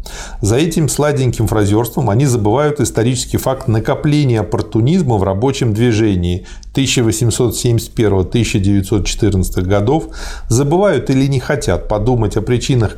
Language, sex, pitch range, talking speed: Russian, male, 105-130 Hz, 100 wpm